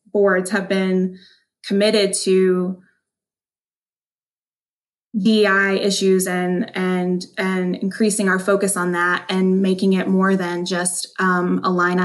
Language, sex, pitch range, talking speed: English, female, 185-210 Hz, 120 wpm